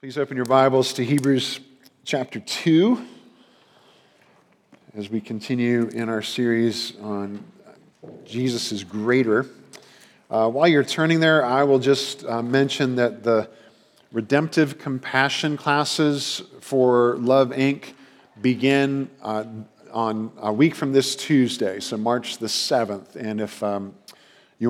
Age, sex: 50-69, male